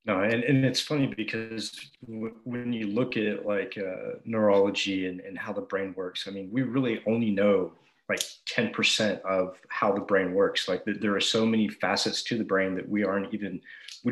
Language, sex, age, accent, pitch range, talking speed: English, male, 30-49, American, 95-115 Hz, 195 wpm